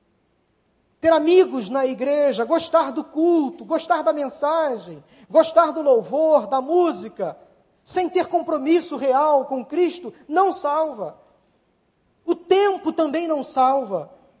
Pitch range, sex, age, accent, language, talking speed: 225-320 Hz, male, 20-39, Brazilian, Portuguese, 115 wpm